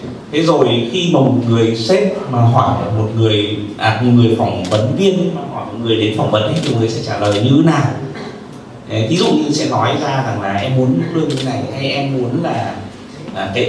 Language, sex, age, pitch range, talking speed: Vietnamese, male, 30-49, 110-145 Hz, 240 wpm